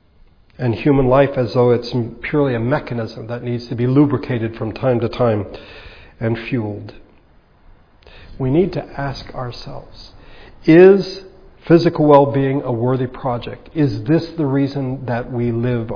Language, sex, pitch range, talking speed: English, male, 115-135 Hz, 145 wpm